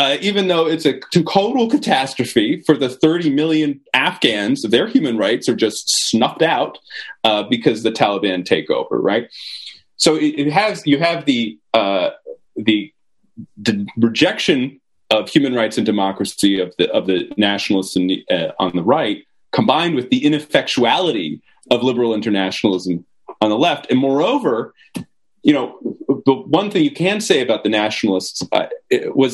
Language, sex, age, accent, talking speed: English, male, 30-49, American, 160 wpm